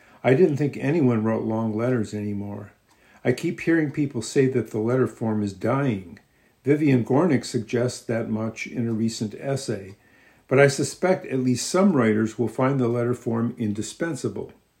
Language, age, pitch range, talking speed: English, 50-69, 110-130 Hz, 165 wpm